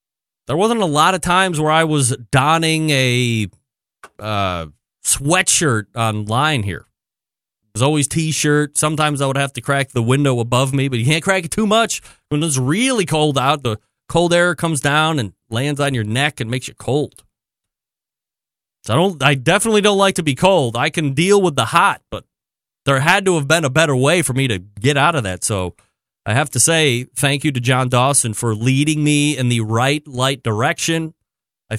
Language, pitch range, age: English, 115-155 Hz, 30-49